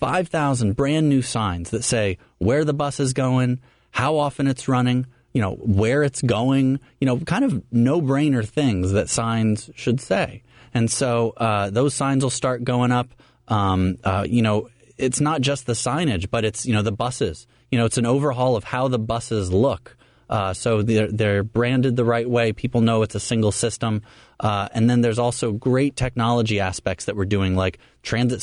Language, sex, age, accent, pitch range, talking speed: English, male, 30-49, American, 105-130 Hz, 195 wpm